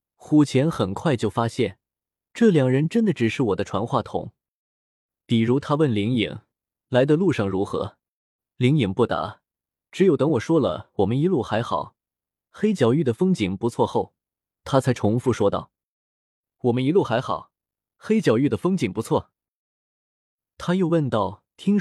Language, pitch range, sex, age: Chinese, 110-165 Hz, male, 20-39